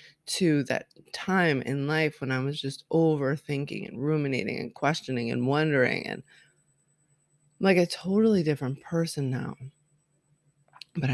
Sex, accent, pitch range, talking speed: female, American, 145-175 Hz, 135 wpm